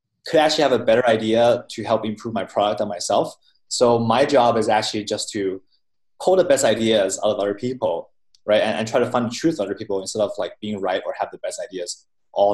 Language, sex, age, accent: English, male, 20-39, Chinese